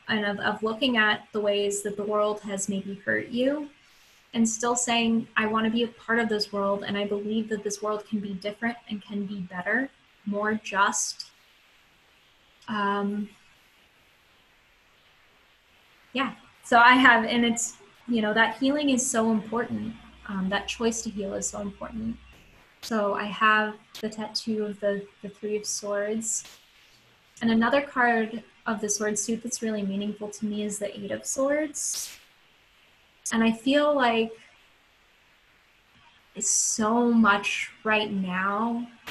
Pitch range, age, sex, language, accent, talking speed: 205-230 Hz, 10-29, female, English, American, 150 wpm